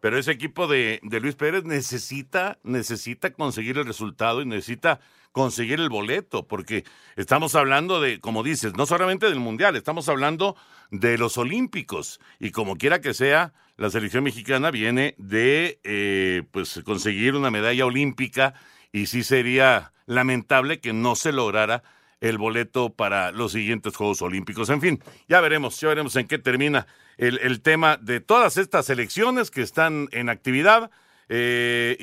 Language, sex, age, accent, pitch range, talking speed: Spanish, male, 50-69, Mexican, 115-165 Hz, 155 wpm